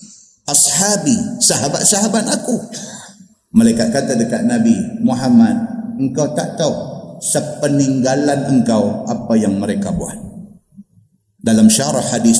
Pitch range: 140-225 Hz